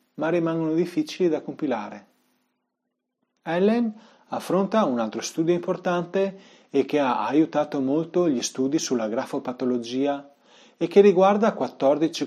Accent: native